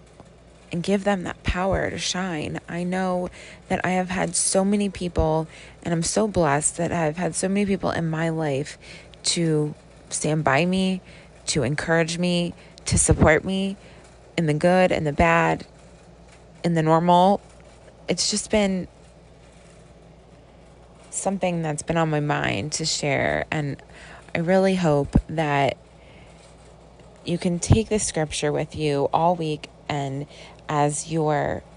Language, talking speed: English, 145 wpm